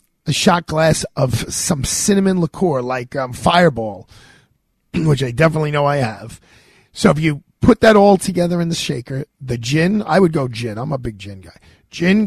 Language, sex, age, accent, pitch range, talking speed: English, male, 40-59, American, 140-180 Hz, 185 wpm